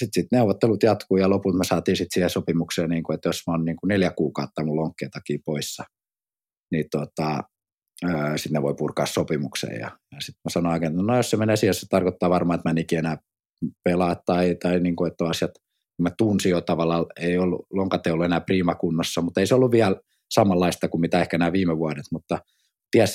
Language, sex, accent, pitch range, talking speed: Finnish, male, native, 85-95 Hz, 210 wpm